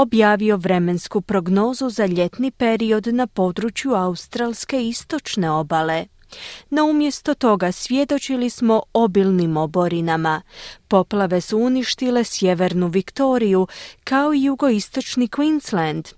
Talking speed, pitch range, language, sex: 105 wpm, 180-250 Hz, Croatian, female